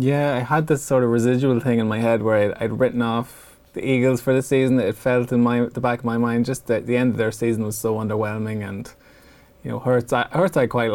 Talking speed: 265 wpm